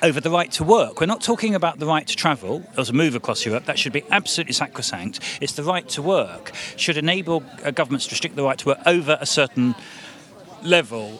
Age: 40-59